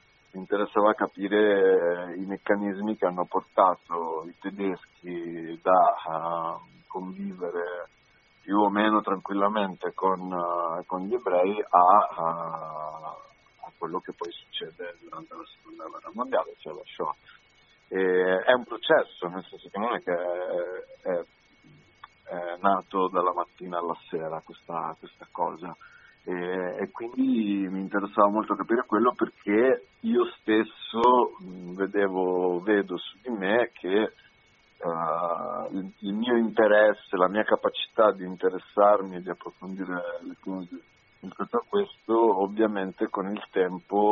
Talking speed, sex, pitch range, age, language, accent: 120 wpm, male, 90-105 Hz, 40-59, Italian, native